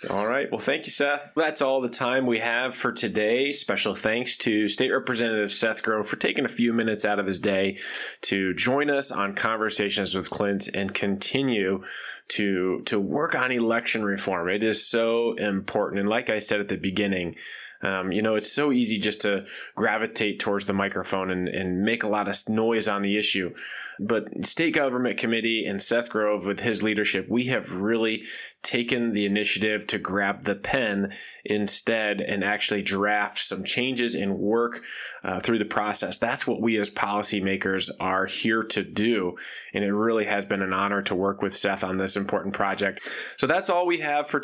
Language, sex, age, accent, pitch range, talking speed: English, male, 20-39, American, 100-120 Hz, 190 wpm